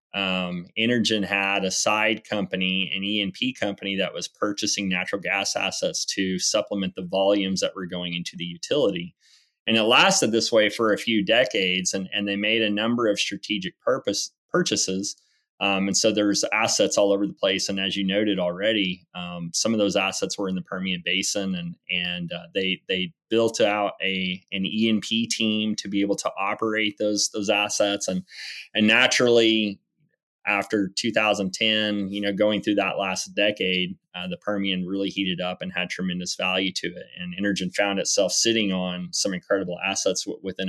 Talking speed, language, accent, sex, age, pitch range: 180 wpm, English, American, male, 30-49, 95-110 Hz